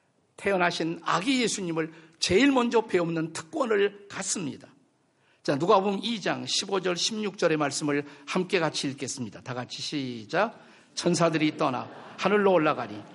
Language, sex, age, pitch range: Korean, male, 50-69, 150-195 Hz